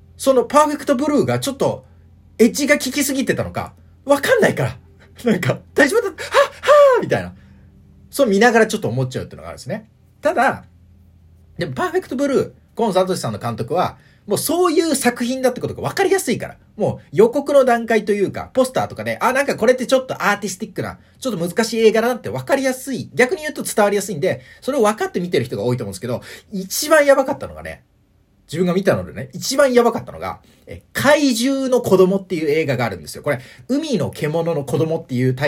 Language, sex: Japanese, male